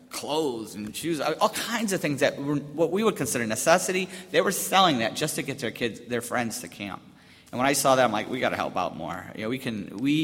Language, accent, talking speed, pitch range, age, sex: English, American, 265 wpm, 125-205 Hz, 40-59, male